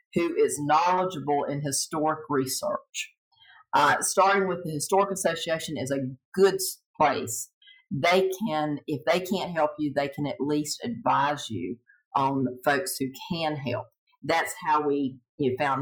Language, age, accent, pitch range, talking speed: English, 50-69, American, 145-185 Hz, 145 wpm